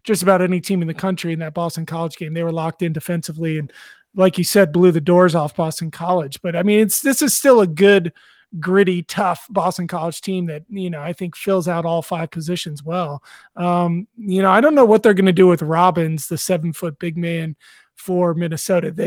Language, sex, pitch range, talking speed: English, male, 170-210 Hz, 225 wpm